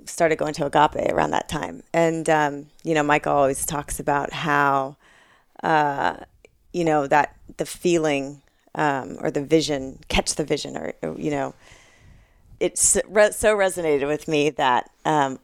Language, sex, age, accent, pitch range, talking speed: English, female, 30-49, American, 145-170 Hz, 160 wpm